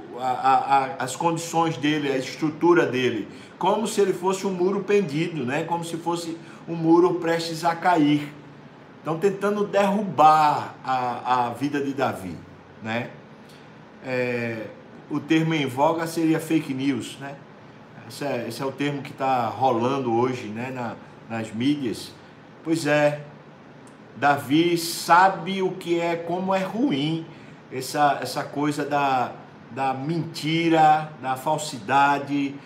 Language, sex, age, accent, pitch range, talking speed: Portuguese, male, 50-69, Brazilian, 135-165 Hz, 125 wpm